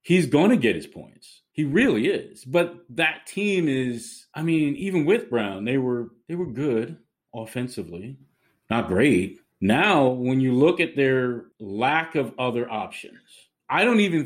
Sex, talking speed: male, 165 wpm